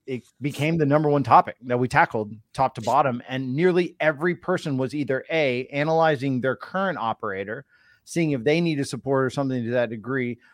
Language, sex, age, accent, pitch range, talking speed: English, male, 30-49, American, 120-145 Hz, 195 wpm